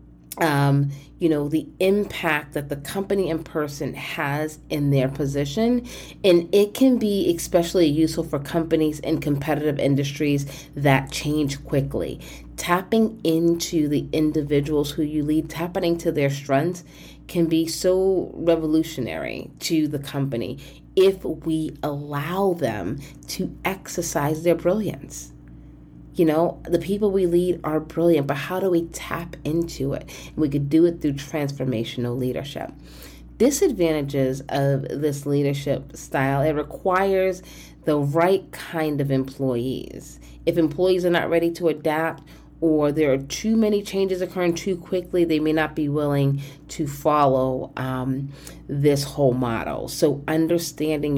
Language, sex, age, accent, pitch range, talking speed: English, female, 30-49, American, 140-170 Hz, 135 wpm